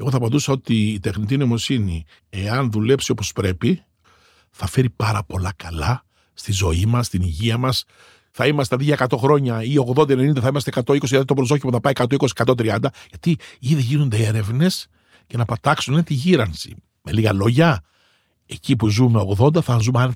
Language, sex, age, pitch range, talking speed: Greek, male, 60-79, 105-135 Hz, 165 wpm